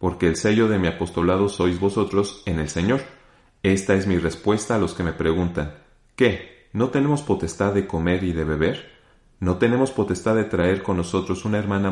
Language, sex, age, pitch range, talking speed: Spanish, male, 30-49, 85-105 Hz, 190 wpm